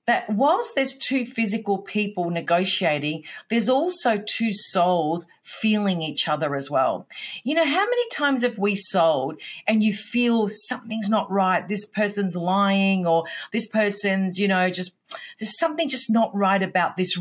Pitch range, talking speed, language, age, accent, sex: 190-255 Hz, 160 wpm, English, 40-59, Australian, female